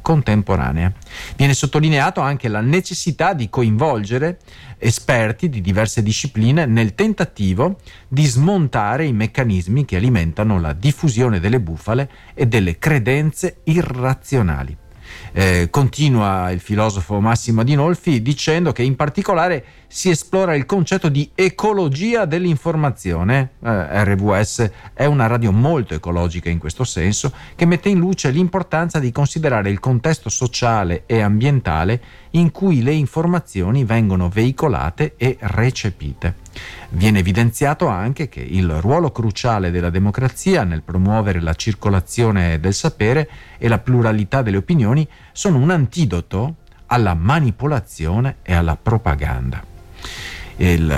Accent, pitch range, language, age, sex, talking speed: native, 90-145 Hz, Italian, 40-59, male, 120 wpm